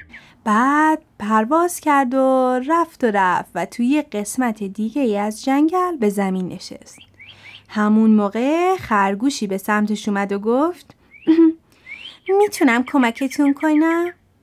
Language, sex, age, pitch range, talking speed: Persian, female, 30-49, 210-290 Hz, 130 wpm